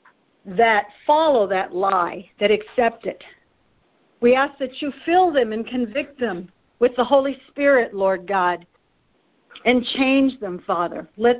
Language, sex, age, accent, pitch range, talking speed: English, female, 60-79, American, 210-275 Hz, 140 wpm